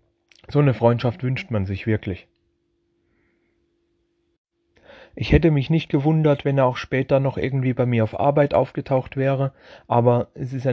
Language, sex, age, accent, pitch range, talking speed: German, male, 30-49, German, 115-140 Hz, 155 wpm